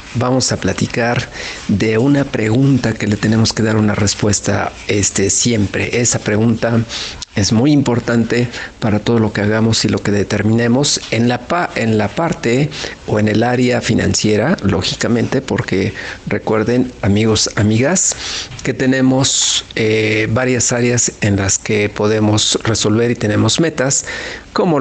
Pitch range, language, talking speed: 105-120 Hz, Spanish, 135 wpm